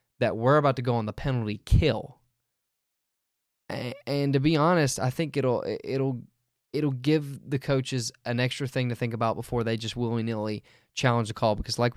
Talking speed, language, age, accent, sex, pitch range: 190 wpm, English, 20-39, American, male, 115-140 Hz